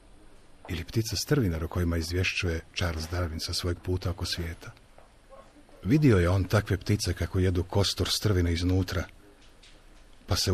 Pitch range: 85-100 Hz